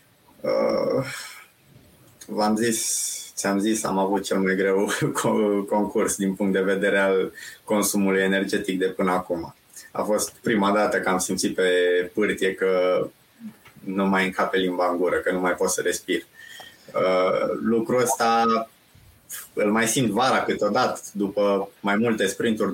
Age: 20-39